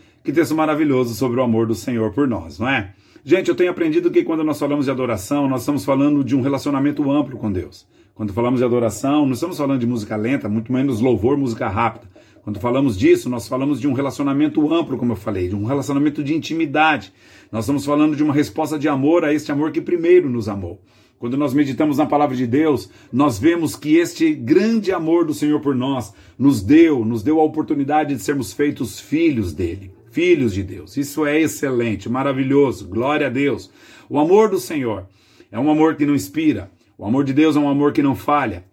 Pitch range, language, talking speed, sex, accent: 120-155 Hz, Portuguese, 210 wpm, male, Brazilian